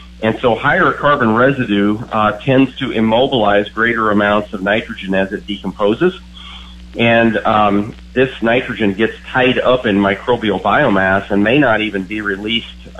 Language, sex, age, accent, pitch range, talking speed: English, male, 40-59, American, 95-115 Hz, 150 wpm